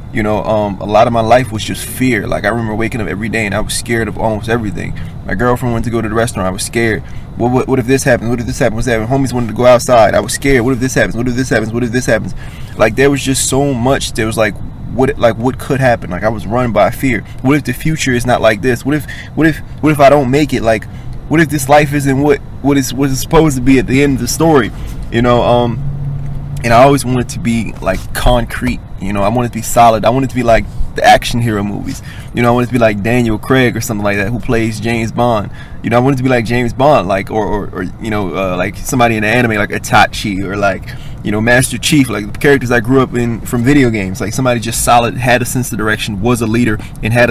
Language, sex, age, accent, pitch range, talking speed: English, male, 20-39, American, 110-130 Hz, 285 wpm